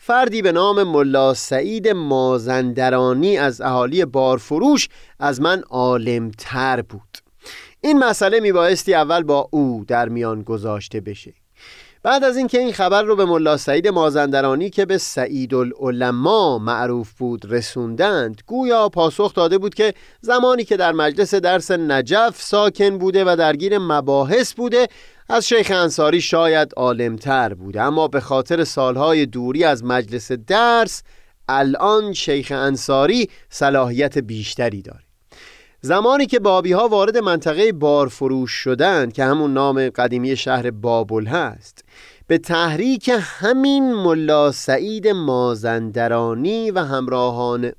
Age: 30-49